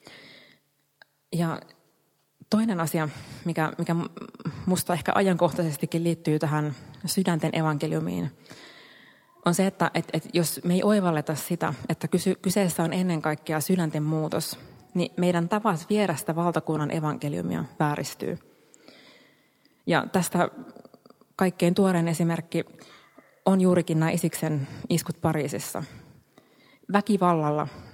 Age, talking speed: 20-39, 105 wpm